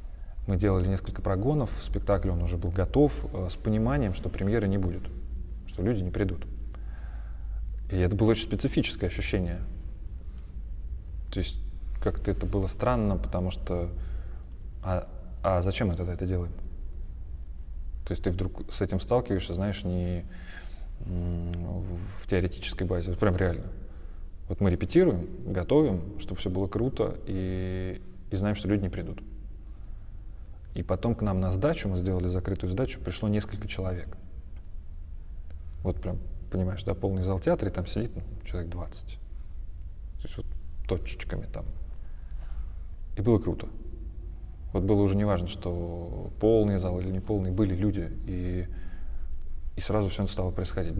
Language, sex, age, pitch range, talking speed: Russian, male, 20-39, 80-100 Hz, 145 wpm